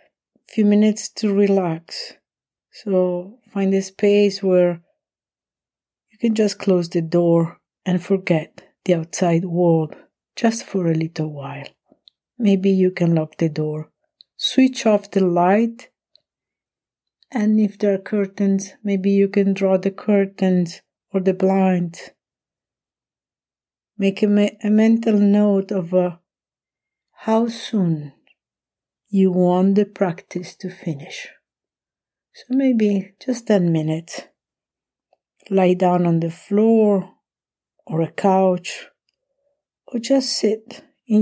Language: English